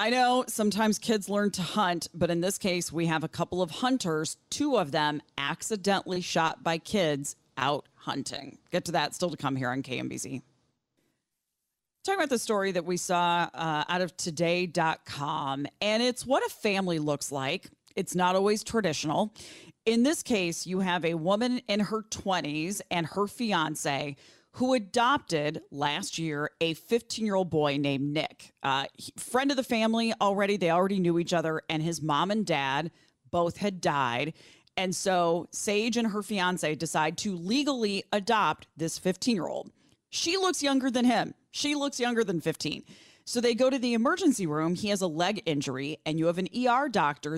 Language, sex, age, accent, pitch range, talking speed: English, female, 40-59, American, 155-215 Hz, 175 wpm